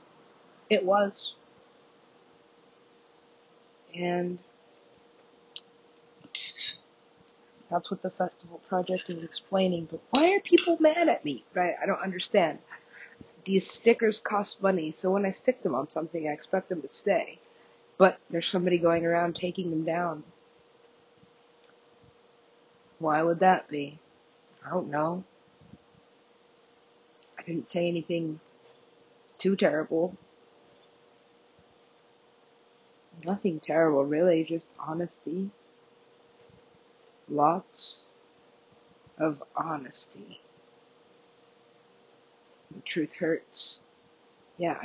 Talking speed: 95 wpm